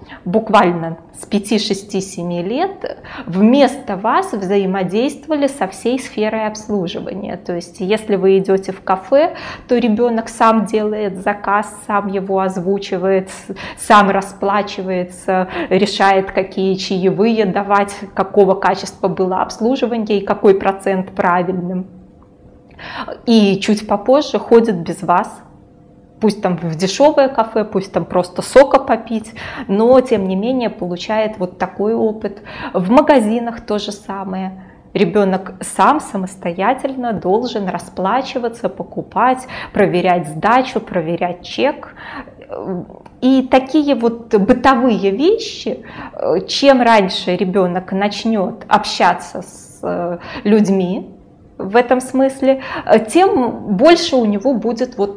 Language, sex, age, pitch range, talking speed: Russian, female, 20-39, 190-250 Hz, 110 wpm